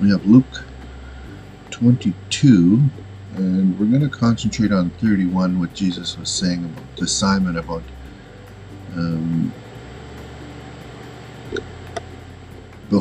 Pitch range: 85-100 Hz